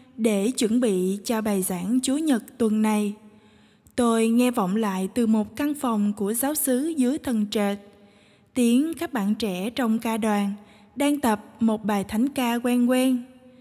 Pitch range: 220-275 Hz